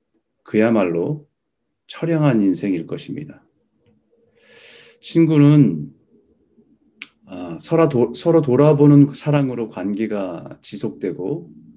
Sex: male